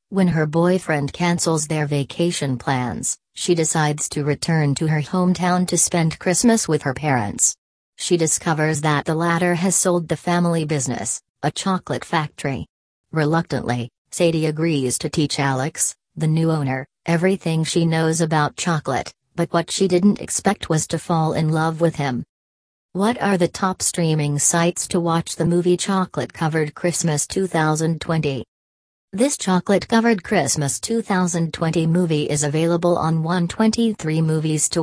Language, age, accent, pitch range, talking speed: English, 40-59, American, 150-175 Hz, 145 wpm